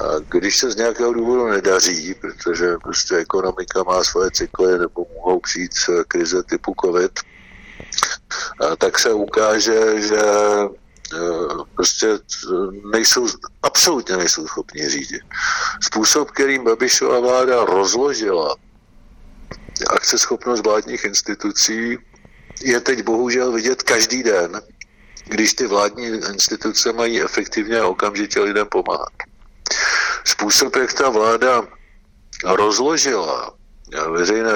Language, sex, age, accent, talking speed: Czech, male, 60-79, native, 100 wpm